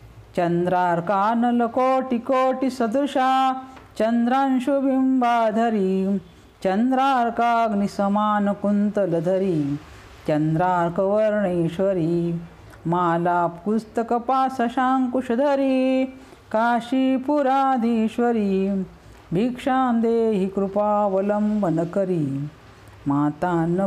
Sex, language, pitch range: female, Marathi, 180-245 Hz